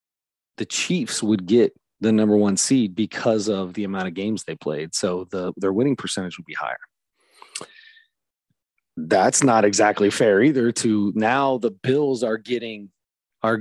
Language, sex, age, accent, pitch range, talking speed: English, male, 30-49, American, 110-135 Hz, 160 wpm